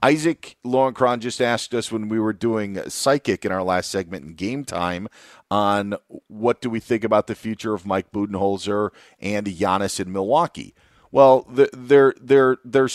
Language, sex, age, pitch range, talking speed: English, male, 40-59, 100-125 Hz, 165 wpm